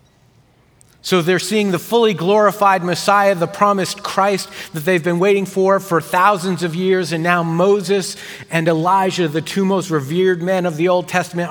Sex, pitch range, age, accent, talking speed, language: male, 120-165 Hz, 50-69, American, 170 wpm, English